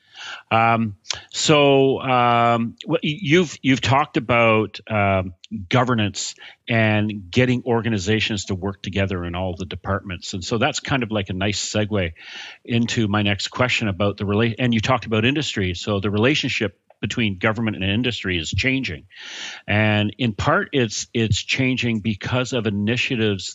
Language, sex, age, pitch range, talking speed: English, male, 40-59, 95-115 Hz, 150 wpm